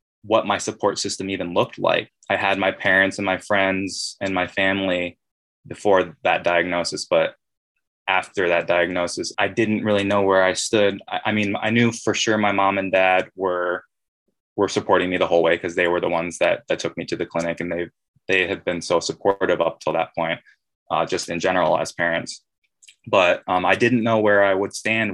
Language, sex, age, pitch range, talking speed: English, male, 20-39, 90-100 Hz, 210 wpm